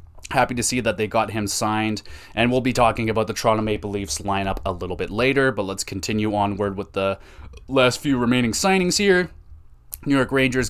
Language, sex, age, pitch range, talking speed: English, male, 20-39, 95-120 Hz, 200 wpm